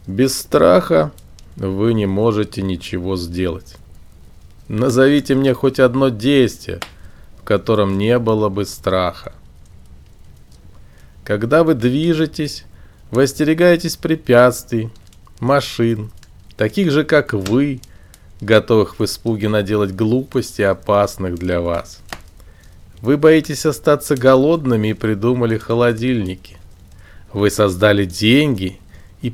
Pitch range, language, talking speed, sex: 90-130 Hz, Russian, 95 wpm, male